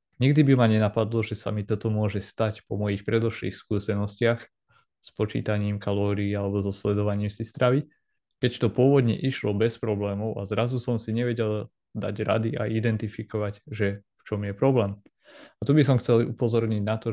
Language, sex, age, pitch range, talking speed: Slovak, male, 20-39, 105-115 Hz, 175 wpm